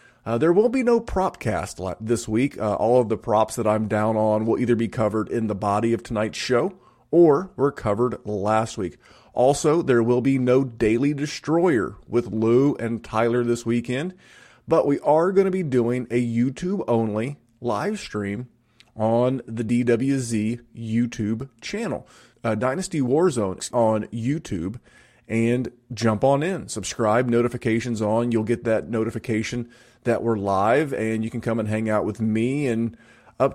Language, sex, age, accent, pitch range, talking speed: English, male, 30-49, American, 110-130 Hz, 165 wpm